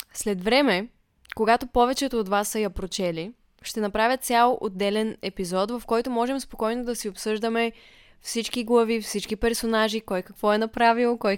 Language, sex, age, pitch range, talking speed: Bulgarian, female, 20-39, 200-235 Hz, 160 wpm